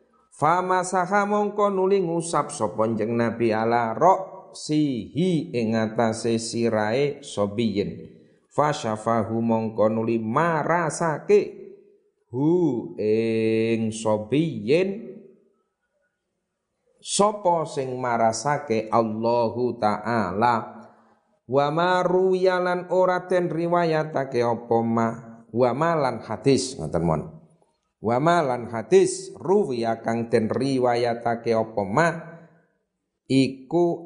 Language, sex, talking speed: Indonesian, male, 70 wpm